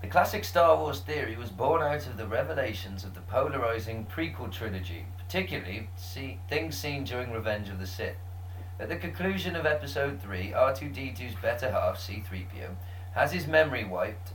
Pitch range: 90-95 Hz